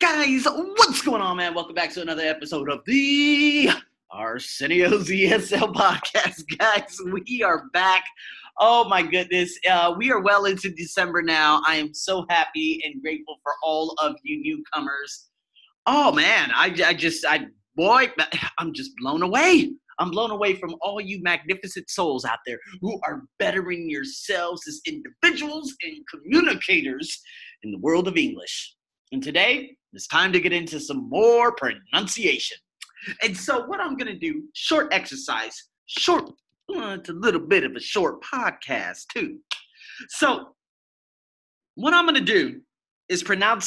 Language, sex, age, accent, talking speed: English, male, 30-49, American, 155 wpm